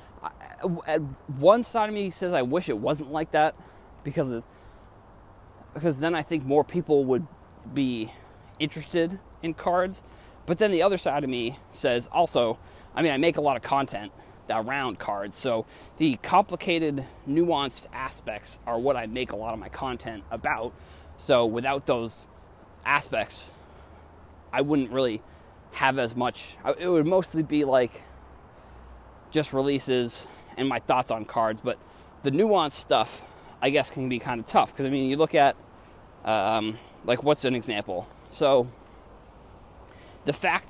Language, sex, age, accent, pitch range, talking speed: English, male, 20-39, American, 115-155 Hz, 155 wpm